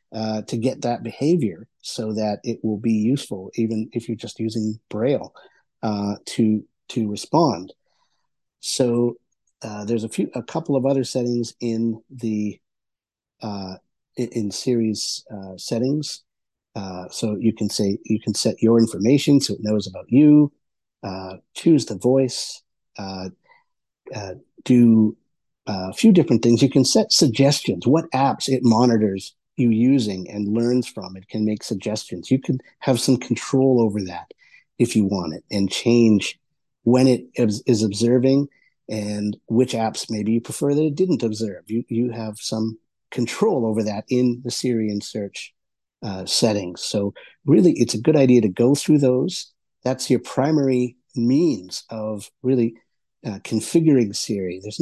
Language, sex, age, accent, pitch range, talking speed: English, male, 50-69, American, 110-130 Hz, 155 wpm